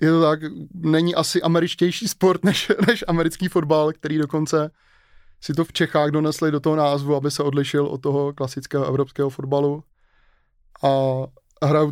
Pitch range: 140-155 Hz